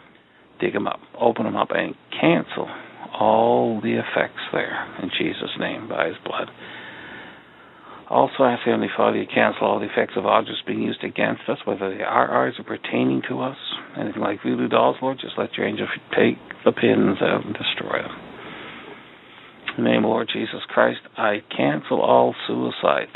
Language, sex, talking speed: English, male, 185 wpm